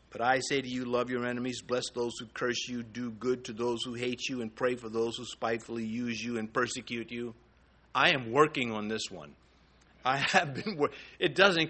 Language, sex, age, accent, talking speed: English, male, 50-69, American, 220 wpm